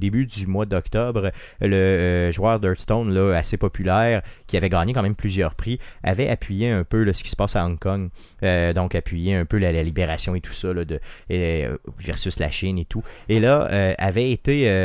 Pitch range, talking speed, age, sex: 95-115 Hz, 220 wpm, 30-49, male